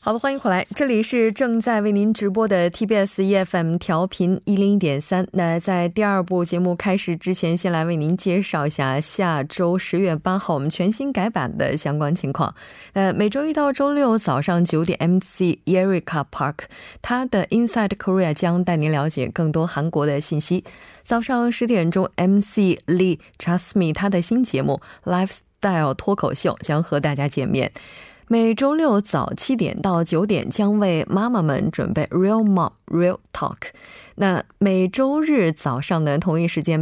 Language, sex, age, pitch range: Korean, female, 20-39, 160-205 Hz